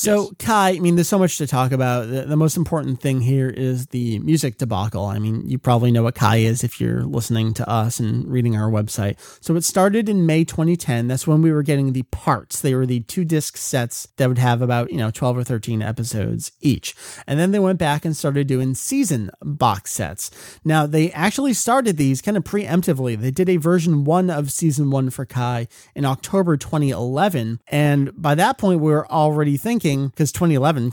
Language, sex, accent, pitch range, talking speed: English, male, American, 125-170 Hz, 210 wpm